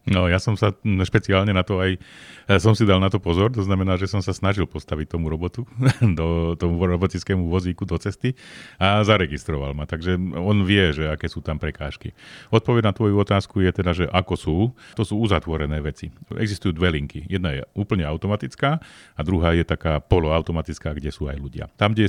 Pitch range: 80-100 Hz